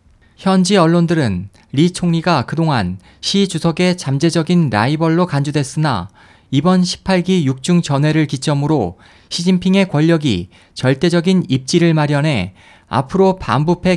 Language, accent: Korean, native